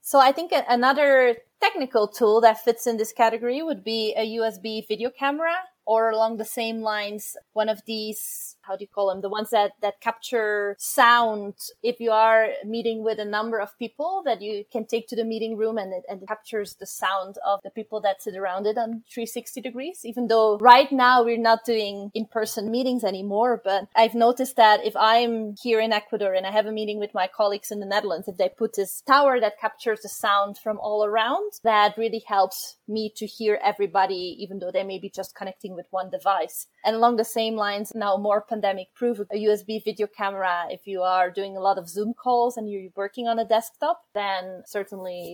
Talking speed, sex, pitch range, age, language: 210 wpm, female, 200-230 Hz, 20-39, English